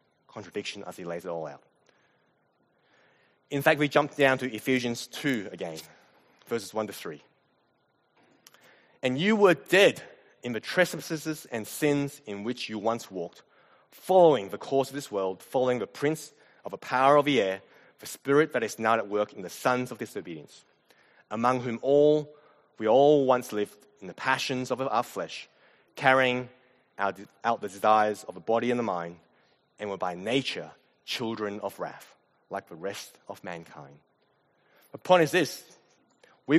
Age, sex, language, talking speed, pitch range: 20-39, male, English, 165 wpm, 105-145 Hz